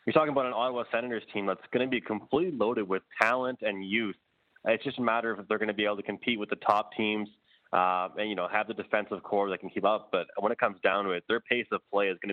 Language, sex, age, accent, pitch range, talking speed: English, male, 20-39, American, 100-115 Hz, 285 wpm